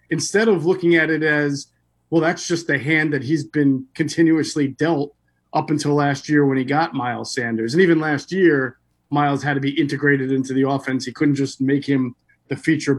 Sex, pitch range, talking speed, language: male, 135-165 Hz, 205 wpm, English